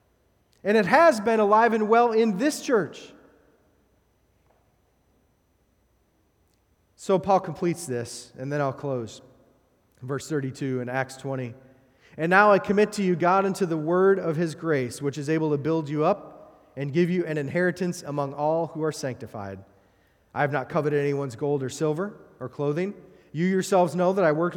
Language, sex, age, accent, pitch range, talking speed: English, male, 30-49, American, 130-175 Hz, 170 wpm